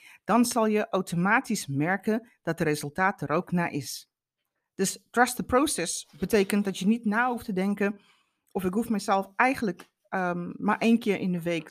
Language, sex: Dutch, female